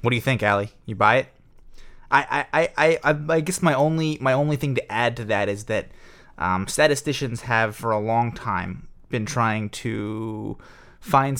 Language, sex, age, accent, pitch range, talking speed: English, male, 20-39, American, 110-135 Hz, 190 wpm